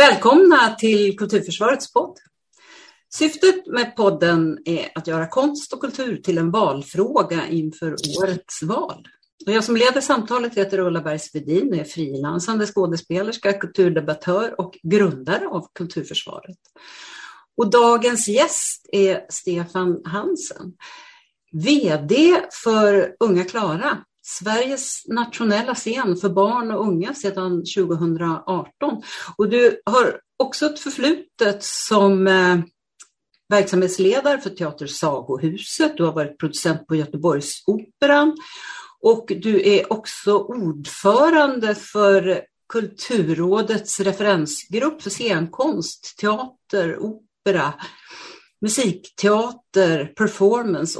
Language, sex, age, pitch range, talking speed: Swedish, female, 50-69, 175-240 Hz, 100 wpm